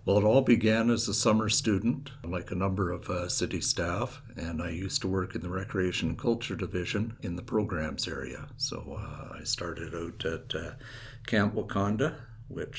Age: 60-79